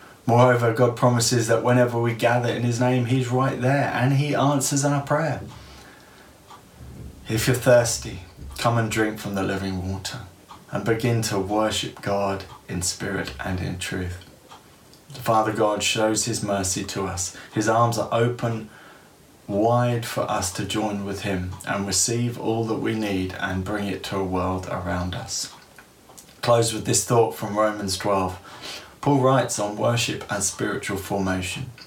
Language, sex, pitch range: English, male, 100-120 Hz